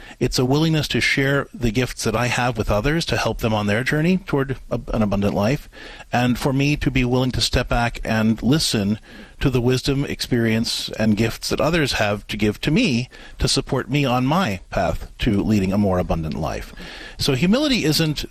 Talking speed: 200 wpm